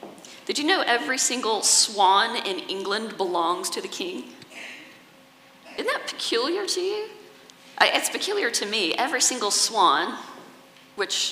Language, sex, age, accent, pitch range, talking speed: English, female, 40-59, American, 185-275 Hz, 135 wpm